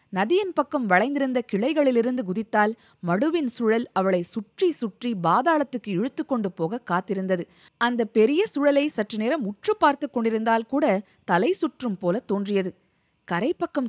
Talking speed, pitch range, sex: 125 wpm, 200-280 Hz, female